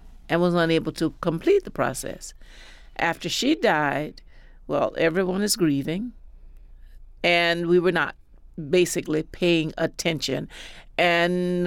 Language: English